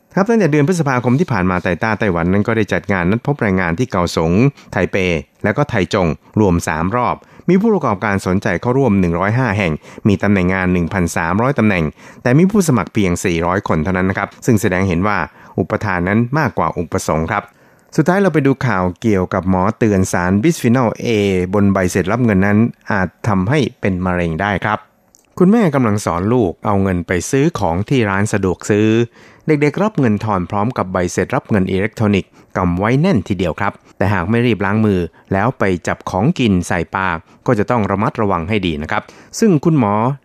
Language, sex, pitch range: Thai, male, 90-120 Hz